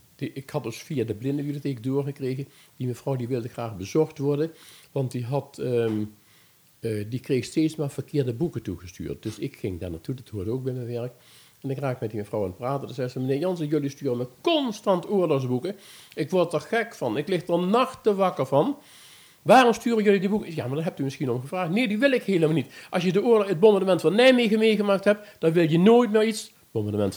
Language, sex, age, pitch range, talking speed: Dutch, male, 50-69, 125-170 Hz, 225 wpm